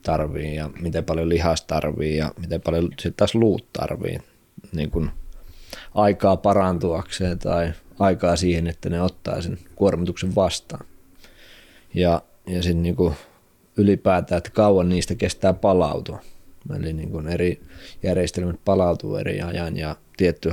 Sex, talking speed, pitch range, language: male, 130 wpm, 85-95 Hz, Finnish